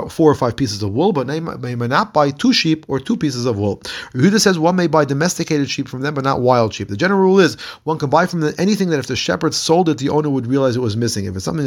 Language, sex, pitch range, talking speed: English, male, 125-165 Hz, 300 wpm